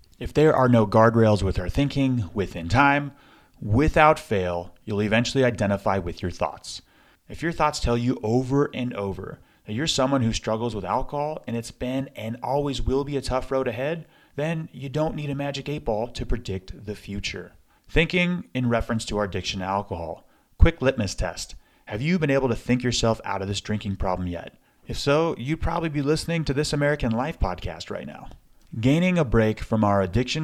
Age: 30-49